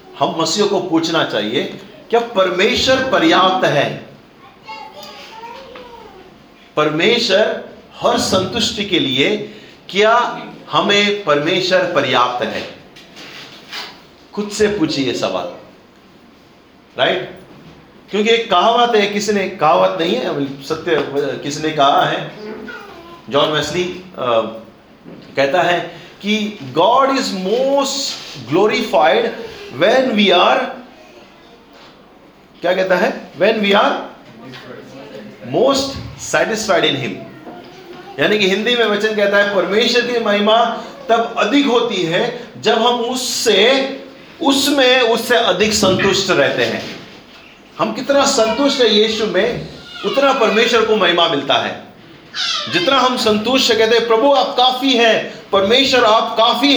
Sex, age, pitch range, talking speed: male, 40-59, 185-250 Hz, 110 wpm